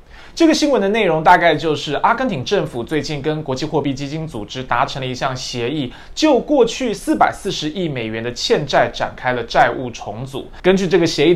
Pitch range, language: 130-180 Hz, Chinese